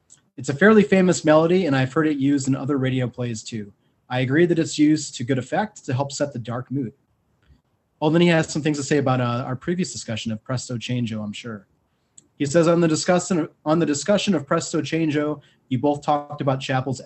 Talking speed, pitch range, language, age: 215 wpm, 120-150 Hz, English, 30-49